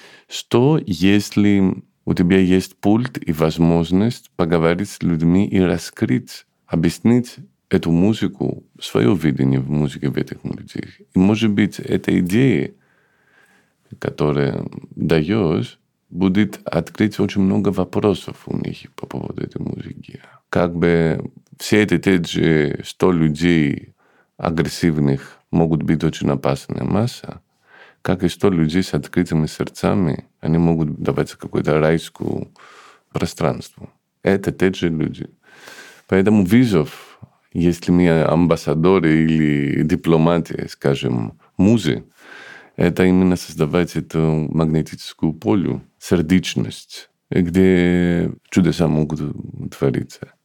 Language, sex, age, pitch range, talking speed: Russian, male, 50-69, 80-100 Hz, 110 wpm